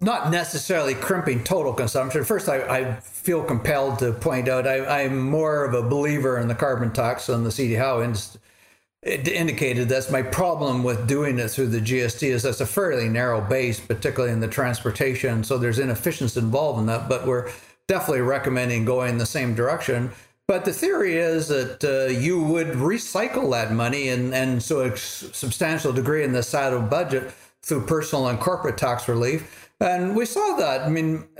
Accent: American